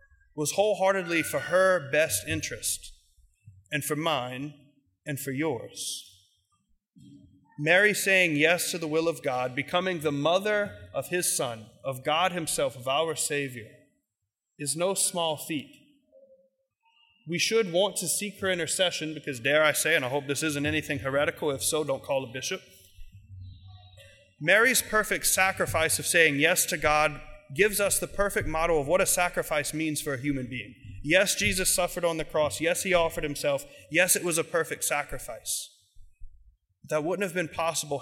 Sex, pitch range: male, 135-180 Hz